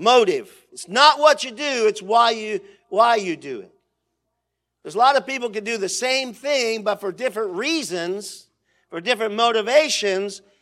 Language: English